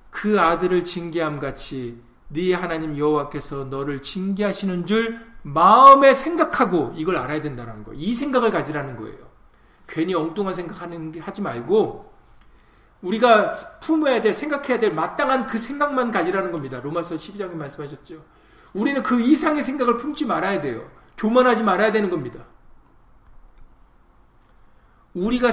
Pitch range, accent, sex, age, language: 145-220 Hz, native, male, 40-59, Korean